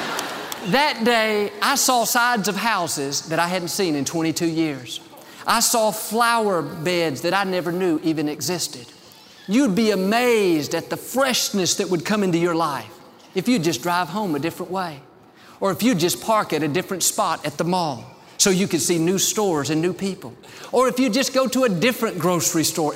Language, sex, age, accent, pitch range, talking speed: English, male, 50-69, American, 160-210 Hz, 195 wpm